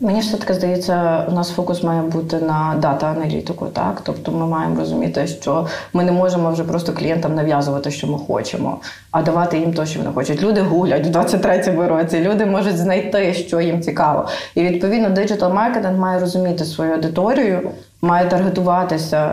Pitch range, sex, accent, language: 165-195 Hz, female, native, Ukrainian